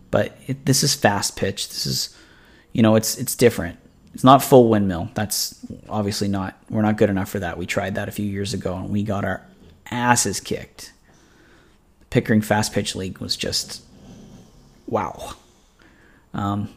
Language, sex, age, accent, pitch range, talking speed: English, male, 30-49, American, 100-115 Hz, 170 wpm